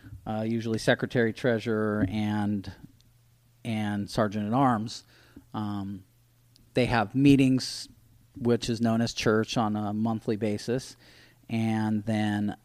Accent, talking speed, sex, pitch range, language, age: American, 115 wpm, male, 105-120 Hz, English, 40-59